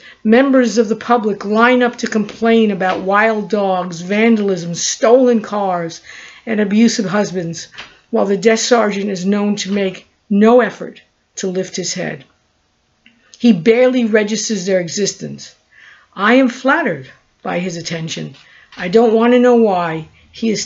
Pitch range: 185-230 Hz